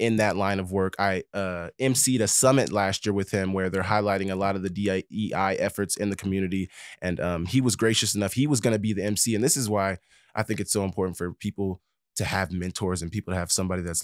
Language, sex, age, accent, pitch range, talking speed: English, male, 20-39, American, 95-105 Hz, 250 wpm